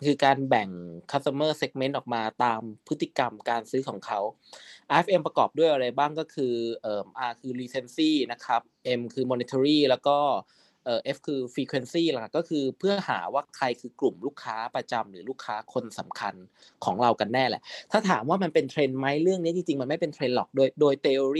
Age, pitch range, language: 20-39, 120-145 Hz, Thai